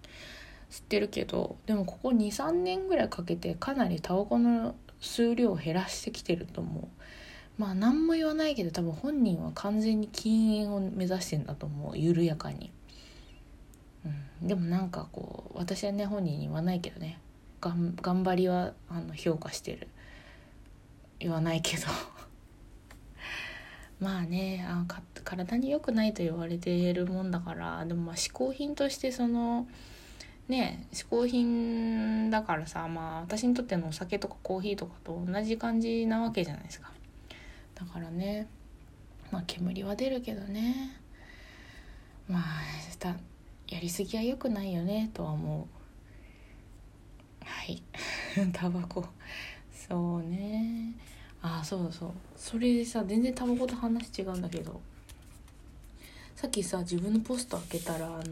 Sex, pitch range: female, 165-230 Hz